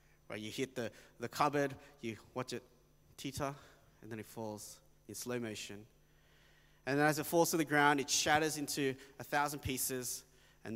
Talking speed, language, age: 175 wpm, English, 20-39